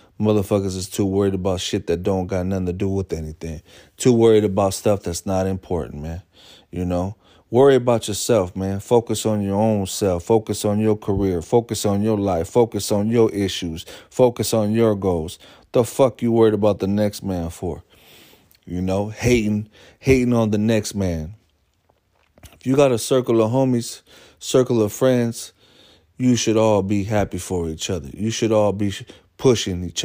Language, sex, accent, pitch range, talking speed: English, male, American, 90-110 Hz, 180 wpm